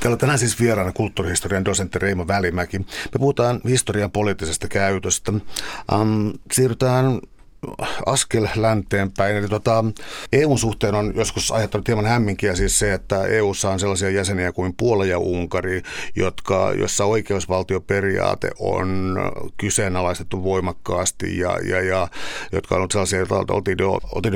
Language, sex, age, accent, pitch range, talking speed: Finnish, male, 60-79, native, 95-110 Hz, 120 wpm